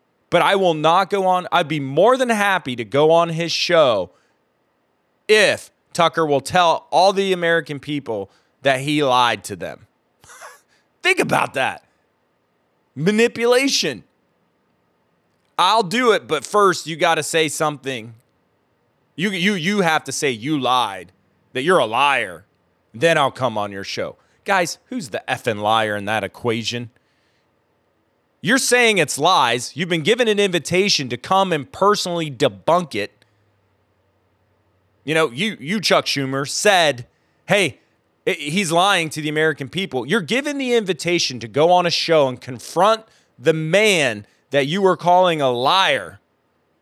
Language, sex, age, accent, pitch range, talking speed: English, male, 30-49, American, 115-190 Hz, 150 wpm